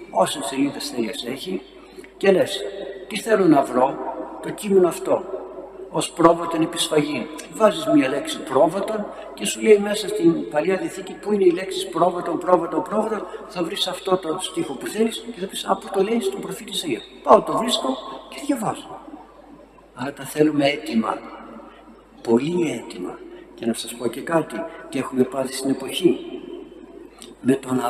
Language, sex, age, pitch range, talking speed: Greek, male, 60-79, 150-230 Hz, 165 wpm